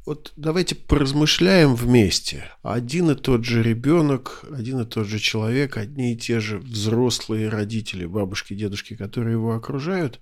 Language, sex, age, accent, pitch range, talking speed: Russian, male, 50-69, native, 110-130 Hz, 145 wpm